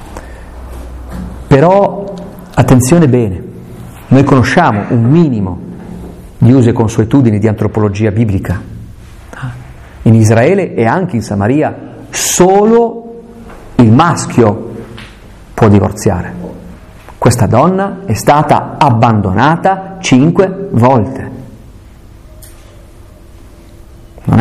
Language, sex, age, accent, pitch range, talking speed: Italian, male, 50-69, native, 105-135 Hz, 80 wpm